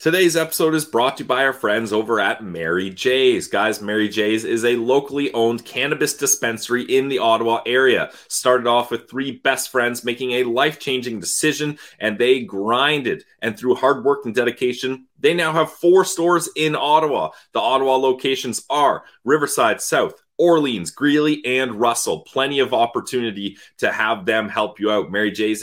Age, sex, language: 30-49, male, English